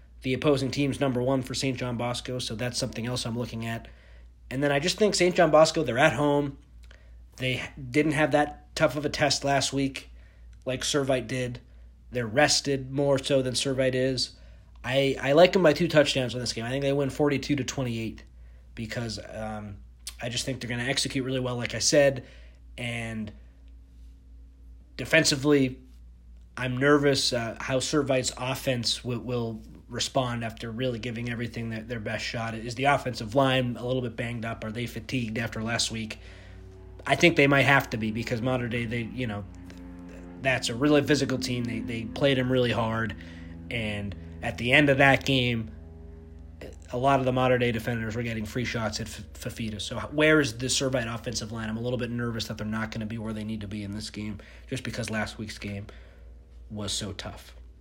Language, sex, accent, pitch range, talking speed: English, male, American, 105-135 Hz, 200 wpm